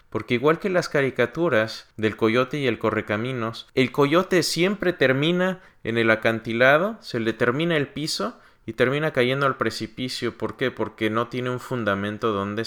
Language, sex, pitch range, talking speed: Spanish, male, 110-150 Hz, 165 wpm